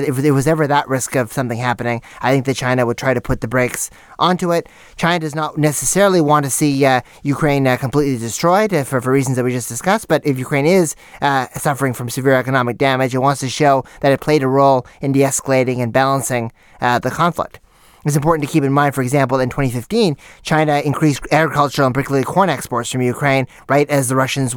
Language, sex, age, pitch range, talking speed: English, male, 30-49, 130-150 Hz, 215 wpm